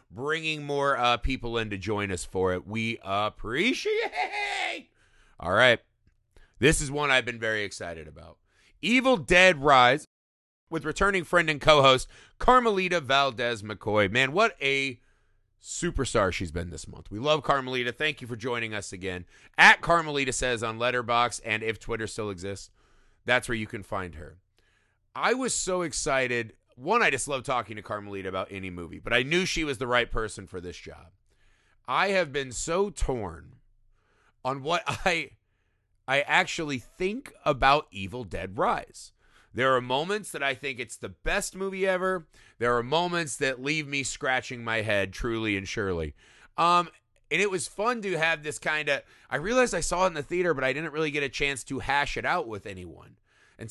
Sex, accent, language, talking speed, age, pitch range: male, American, English, 180 wpm, 30-49, 105-155 Hz